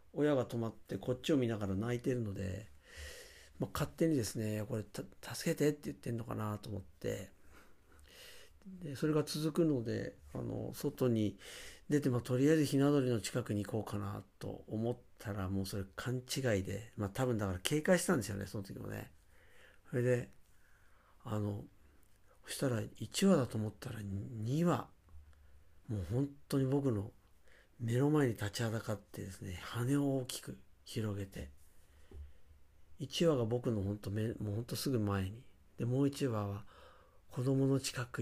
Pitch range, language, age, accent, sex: 95-125 Hz, Japanese, 50-69, native, male